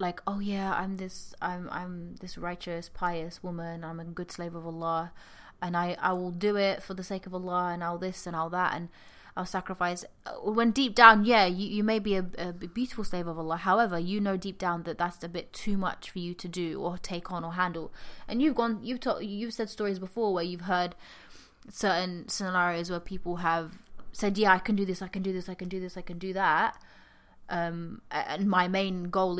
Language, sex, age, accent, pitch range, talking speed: English, female, 20-39, British, 175-205 Hz, 225 wpm